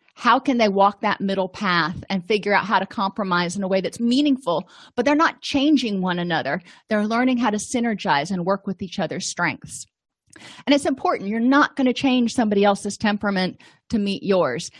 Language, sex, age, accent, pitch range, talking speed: English, female, 30-49, American, 190-250 Hz, 200 wpm